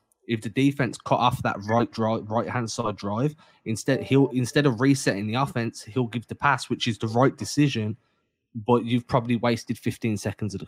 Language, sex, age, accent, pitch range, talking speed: English, male, 20-39, British, 110-130 Hz, 200 wpm